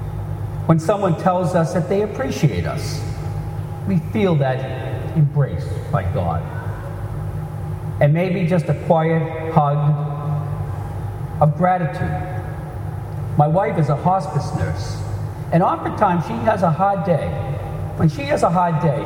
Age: 50-69